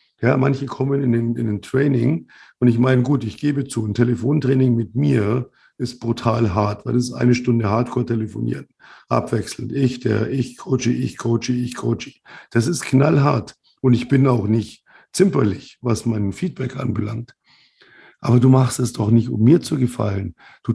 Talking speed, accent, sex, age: 175 wpm, German, male, 50-69